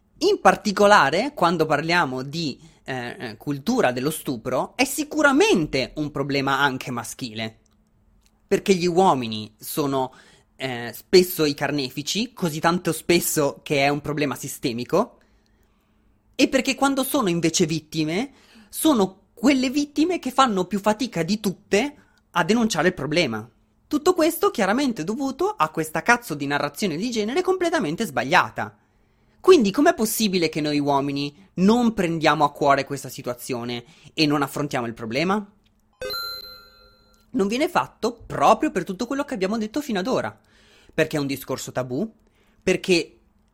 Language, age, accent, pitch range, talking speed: Italian, 20-39, native, 140-215 Hz, 135 wpm